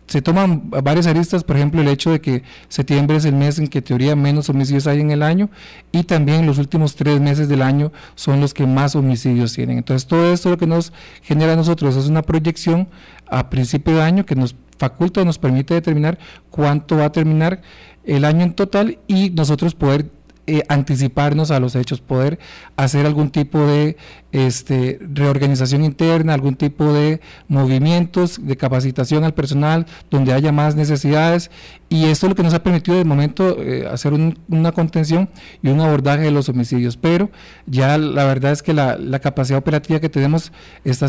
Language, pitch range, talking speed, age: Spanish, 140-165 Hz, 185 wpm, 50-69